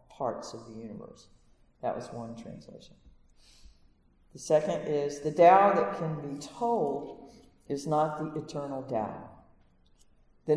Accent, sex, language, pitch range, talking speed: American, female, English, 145-175 Hz, 130 wpm